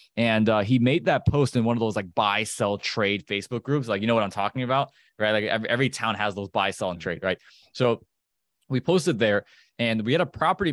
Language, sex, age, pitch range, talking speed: English, male, 20-39, 100-125 Hz, 245 wpm